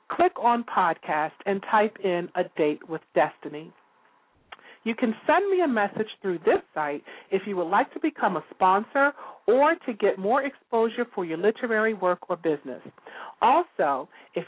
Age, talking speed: 40-59, 165 wpm